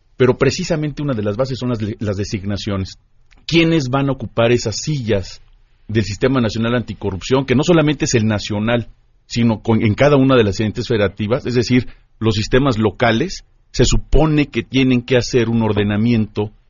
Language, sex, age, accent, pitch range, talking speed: Spanish, male, 40-59, Mexican, 105-125 Hz, 170 wpm